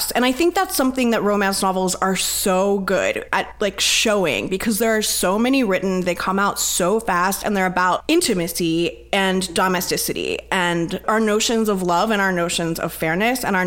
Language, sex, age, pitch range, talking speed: English, female, 20-39, 180-235 Hz, 190 wpm